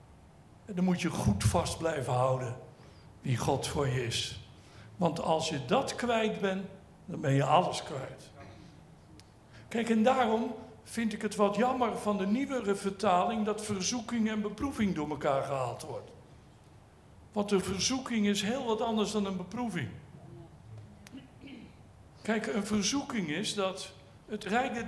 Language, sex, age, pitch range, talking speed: Dutch, male, 60-79, 160-225 Hz, 145 wpm